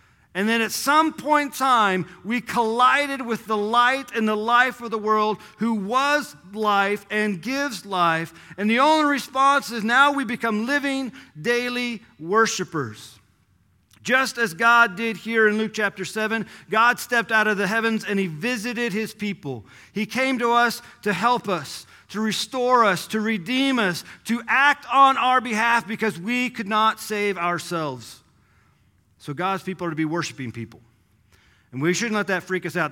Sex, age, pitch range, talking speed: male, 40-59, 175-250 Hz, 175 wpm